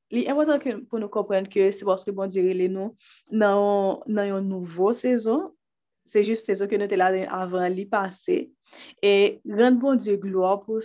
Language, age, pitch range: French, 20-39, 185-235 Hz